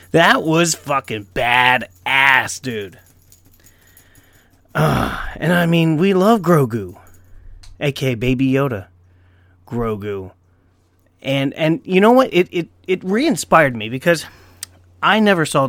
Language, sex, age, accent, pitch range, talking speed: English, male, 30-49, American, 90-145 Hz, 120 wpm